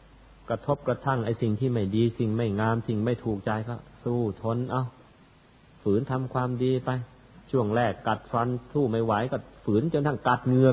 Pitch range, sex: 100-125 Hz, male